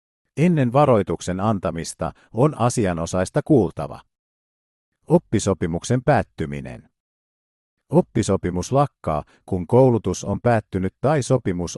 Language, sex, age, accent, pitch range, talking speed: Finnish, male, 50-69, native, 90-125 Hz, 80 wpm